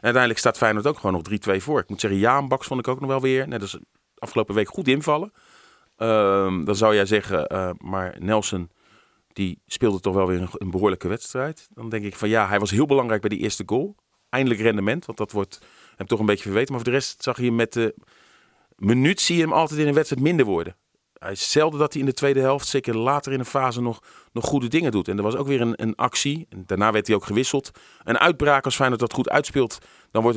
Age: 40-59